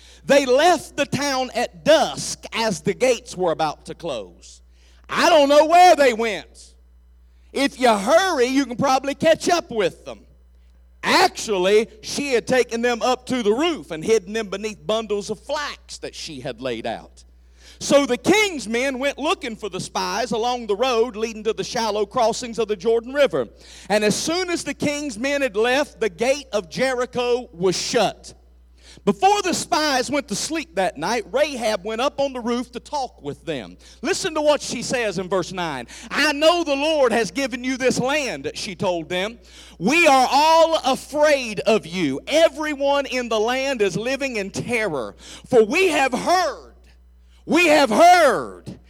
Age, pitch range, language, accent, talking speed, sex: 50-69, 205-285 Hz, English, American, 180 wpm, male